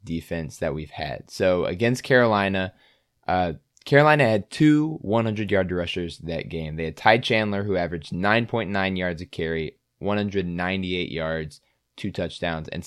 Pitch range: 85-110 Hz